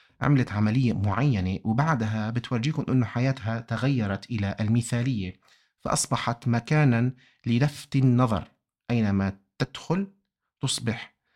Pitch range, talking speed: 105-140 Hz, 90 wpm